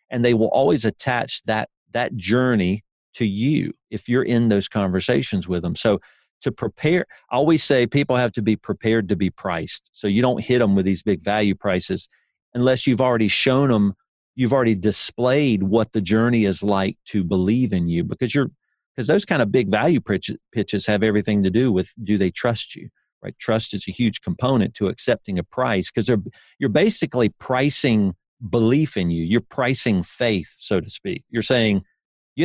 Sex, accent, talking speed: male, American, 190 wpm